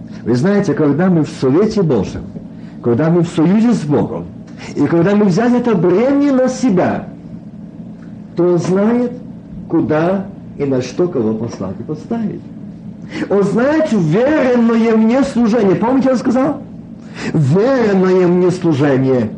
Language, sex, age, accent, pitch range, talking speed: Russian, male, 50-69, native, 160-215 Hz, 135 wpm